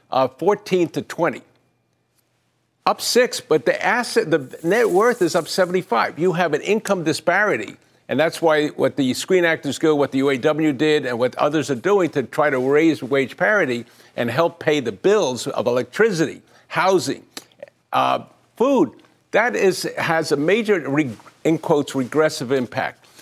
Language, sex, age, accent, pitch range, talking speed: English, male, 50-69, American, 135-170 Hz, 165 wpm